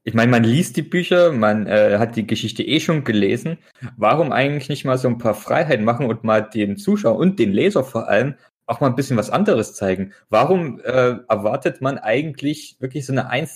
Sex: male